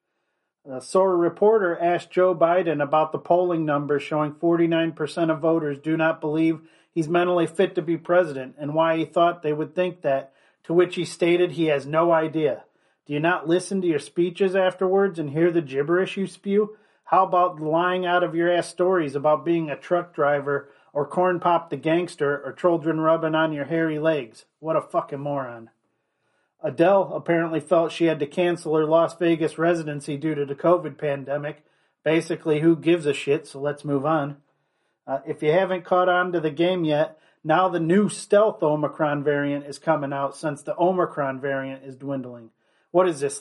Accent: American